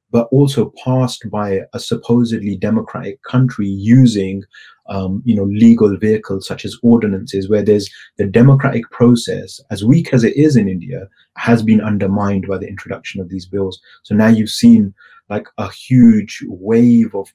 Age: 30-49